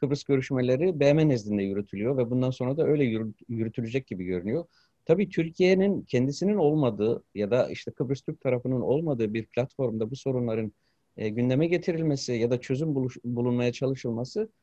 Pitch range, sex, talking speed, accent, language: 115-145 Hz, male, 155 wpm, native, Turkish